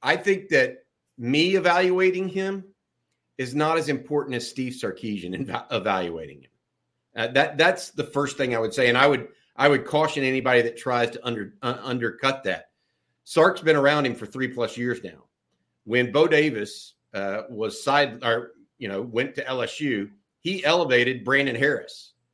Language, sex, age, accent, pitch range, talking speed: English, male, 50-69, American, 125-165 Hz, 170 wpm